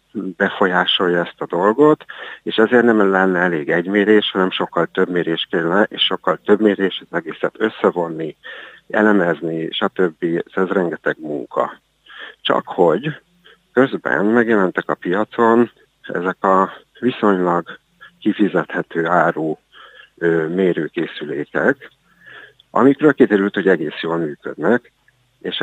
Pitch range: 85-110 Hz